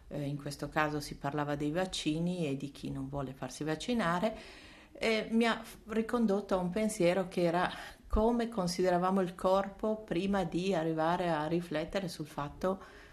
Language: Italian